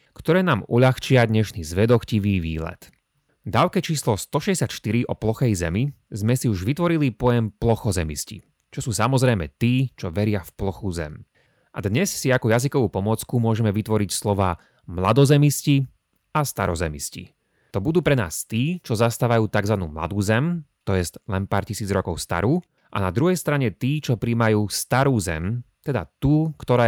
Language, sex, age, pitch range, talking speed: Slovak, male, 30-49, 95-135 Hz, 150 wpm